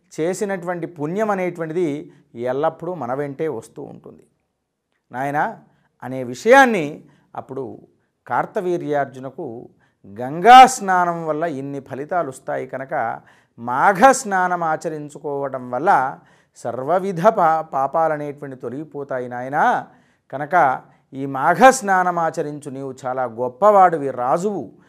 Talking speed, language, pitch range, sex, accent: 80 wpm, Telugu, 130-180 Hz, male, native